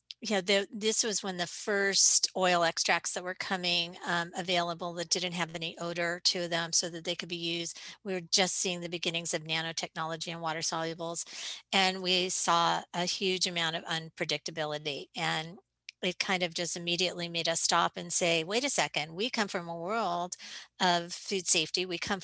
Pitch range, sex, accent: 165-190 Hz, female, American